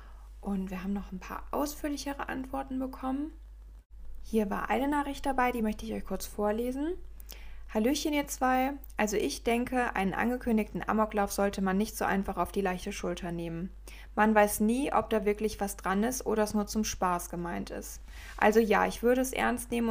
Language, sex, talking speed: English, female, 185 wpm